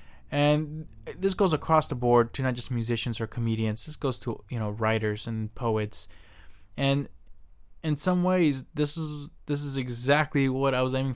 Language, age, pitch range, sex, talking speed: English, 20-39, 115-145 Hz, male, 175 wpm